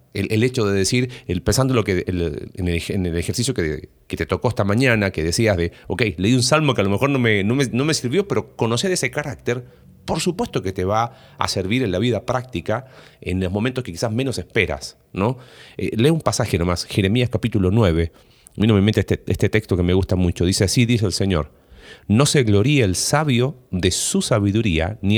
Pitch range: 95-130 Hz